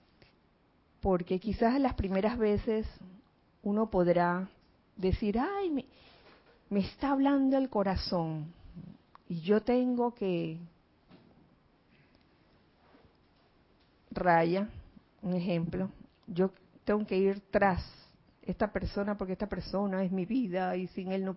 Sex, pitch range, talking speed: female, 180-235 Hz, 110 wpm